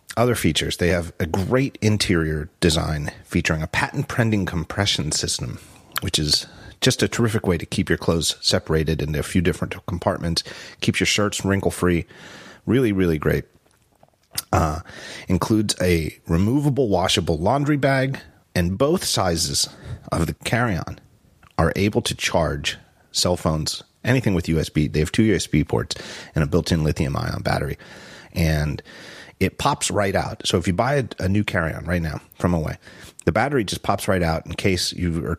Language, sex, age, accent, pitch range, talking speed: English, male, 40-59, American, 80-105 Hz, 160 wpm